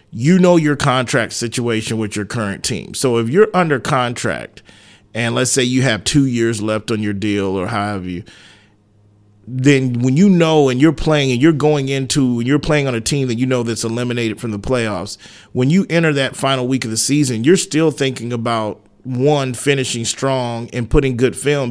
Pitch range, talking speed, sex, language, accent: 110-135 Hz, 205 wpm, male, English, American